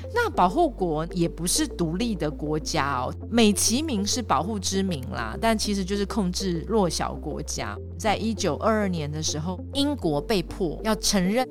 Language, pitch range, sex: Chinese, 145-225 Hz, female